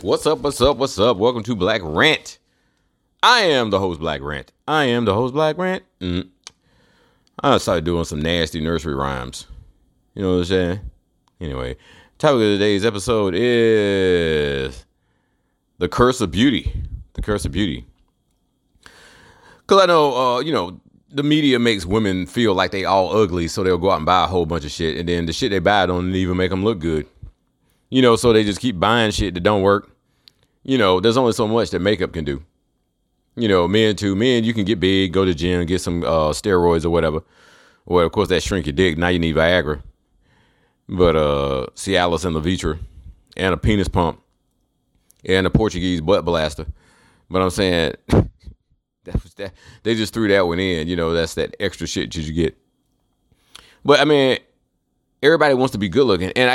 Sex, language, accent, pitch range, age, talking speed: male, English, American, 85-110 Hz, 30-49, 195 wpm